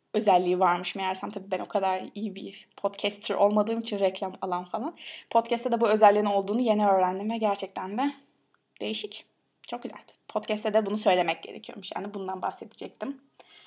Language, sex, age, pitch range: Turkish, female, 20-39, 195-235 Hz